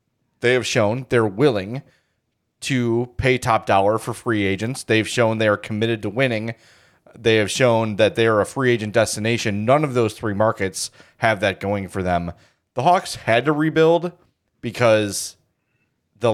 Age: 30-49